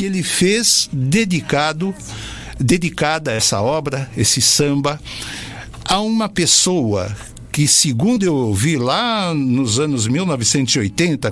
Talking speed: 105 wpm